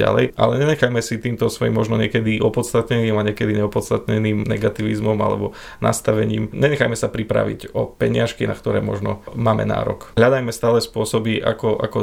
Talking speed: 150 wpm